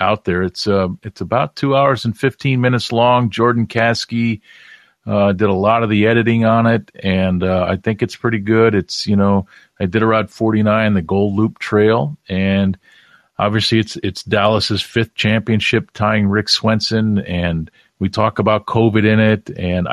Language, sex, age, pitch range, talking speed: English, male, 40-59, 95-115 Hz, 180 wpm